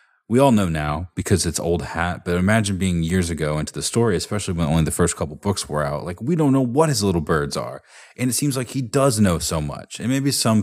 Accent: American